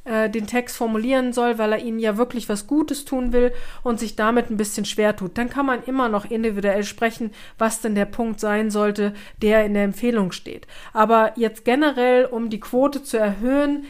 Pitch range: 220-265 Hz